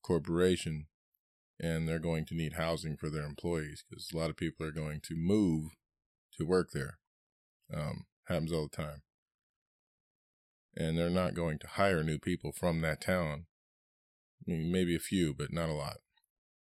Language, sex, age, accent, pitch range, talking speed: English, male, 20-39, American, 80-90 Hz, 170 wpm